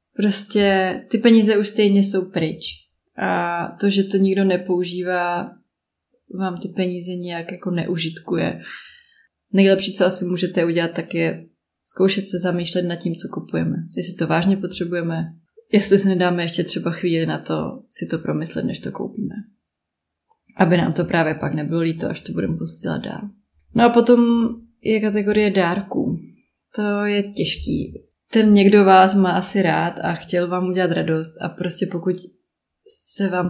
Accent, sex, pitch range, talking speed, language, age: native, female, 170-195 Hz, 160 wpm, Czech, 20-39